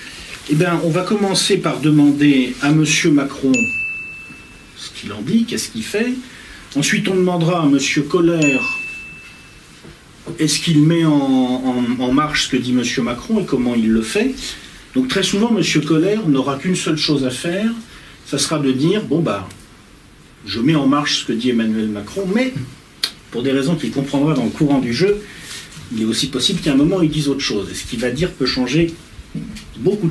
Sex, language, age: male, French, 50-69